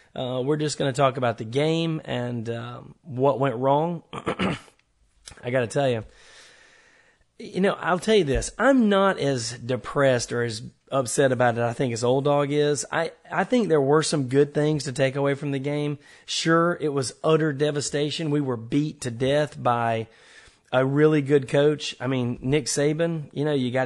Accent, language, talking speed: American, English, 195 wpm